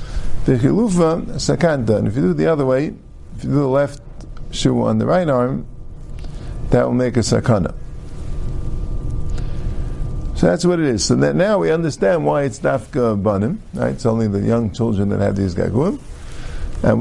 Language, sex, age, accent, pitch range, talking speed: English, male, 50-69, American, 110-160 Hz, 170 wpm